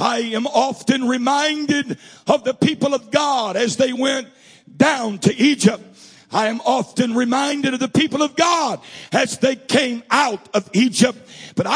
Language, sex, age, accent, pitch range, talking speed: English, male, 60-79, American, 250-310 Hz, 160 wpm